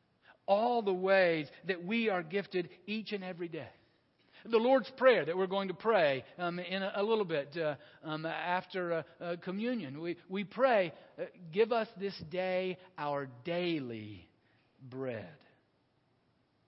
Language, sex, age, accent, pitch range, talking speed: English, male, 50-69, American, 155-225 Hz, 150 wpm